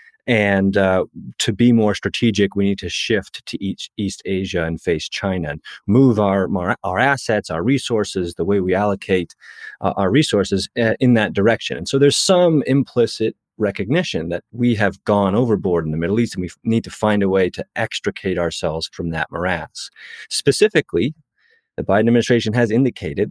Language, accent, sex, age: English, American, male, 30-49